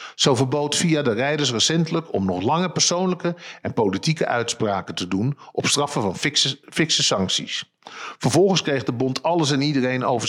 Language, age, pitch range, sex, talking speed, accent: Dutch, 50-69, 115-160 Hz, male, 165 wpm, Dutch